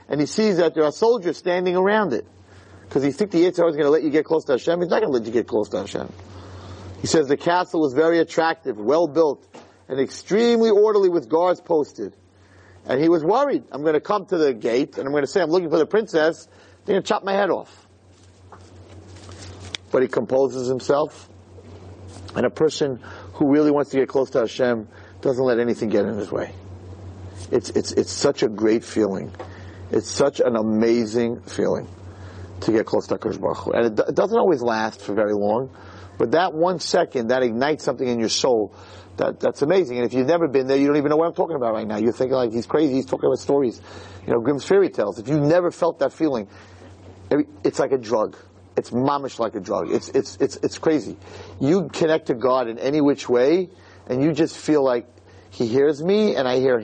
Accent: American